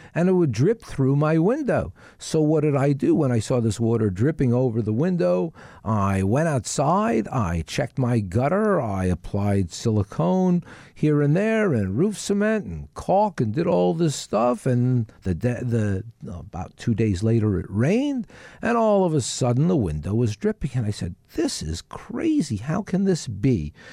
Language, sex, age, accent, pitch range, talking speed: English, male, 50-69, American, 120-160 Hz, 185 wpm